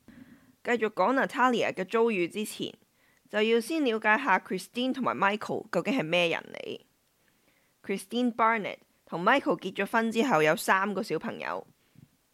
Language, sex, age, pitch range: Chinese, female, 20-39, 185-235 Hz